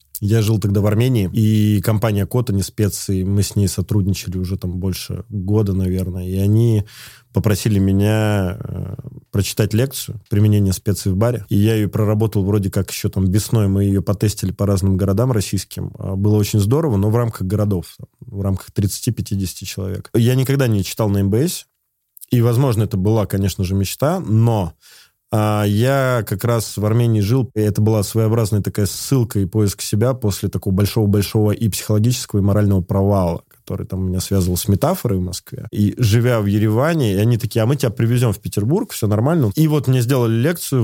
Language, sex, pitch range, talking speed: Russian, male, 100-125 Hz, 180 wpm